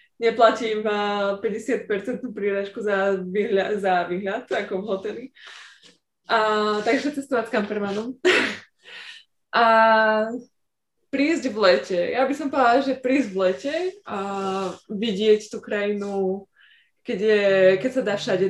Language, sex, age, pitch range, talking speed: Slovak, female, 20-39, 190-240 Hz, 120 wpm